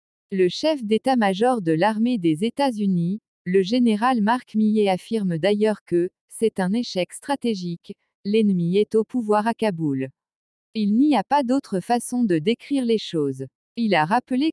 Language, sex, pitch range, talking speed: French, female, 180-235 Hz, 155 wpm